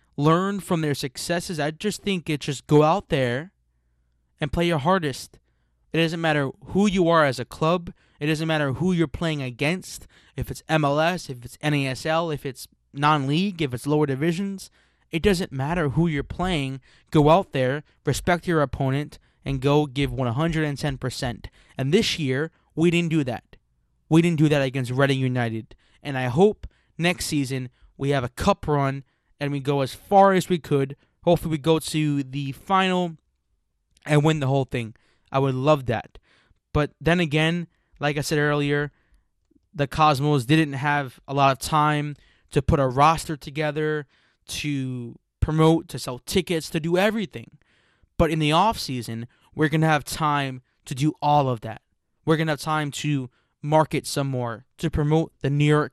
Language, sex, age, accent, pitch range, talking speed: English, male, 20-39, American, 135-160 Hz, 175 wpm